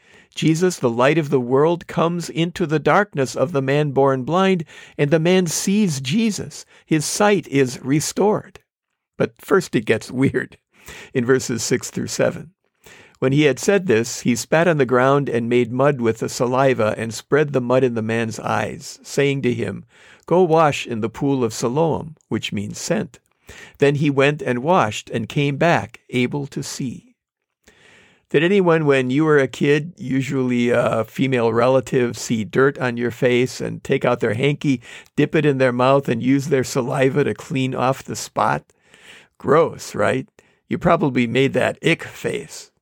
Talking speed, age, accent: 175 wpm, 60-79, American